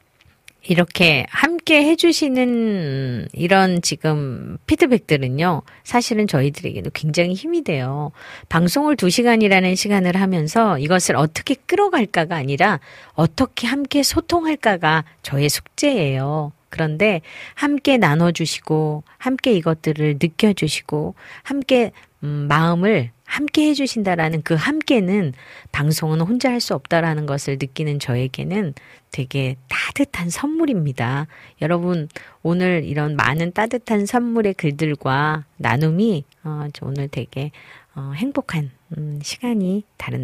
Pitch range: 150-220 Hz